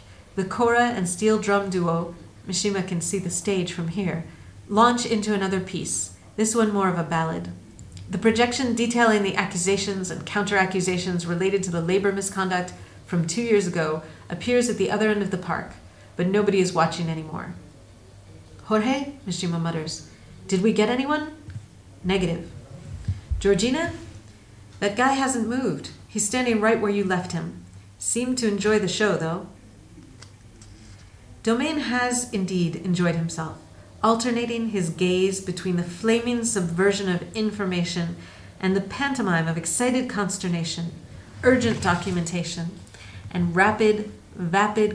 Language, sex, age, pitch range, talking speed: Italian, female, 40-59, 165-210 Hz, 140 wpm